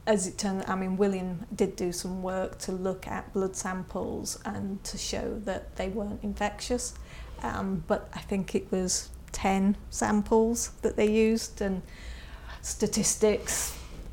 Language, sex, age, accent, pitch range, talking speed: English, female, 30-49, British, 190-215 Hz, 150 wpm